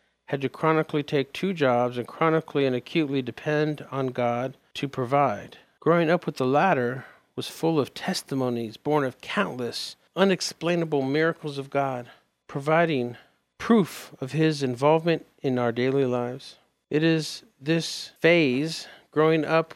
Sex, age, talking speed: male, 50-69, 140 wpm